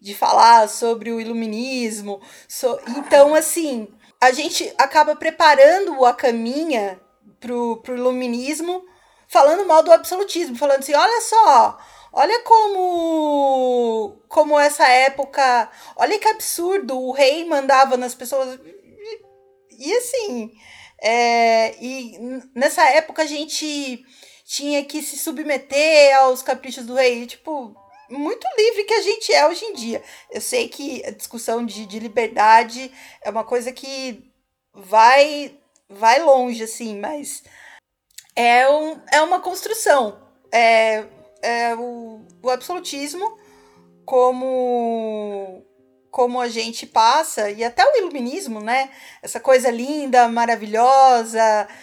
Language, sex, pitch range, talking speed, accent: Portuguese, female, 235-310 Hz, 120 wpm, Brazilian